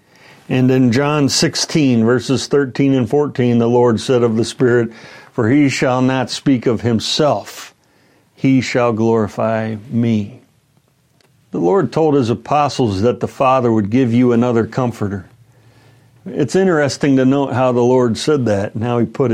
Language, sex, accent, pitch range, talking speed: English, male, American, 115-140 Hz, 160 wpm